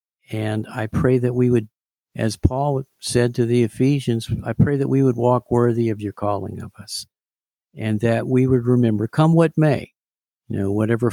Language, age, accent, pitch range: English, 50-69, American, 110-135 Hz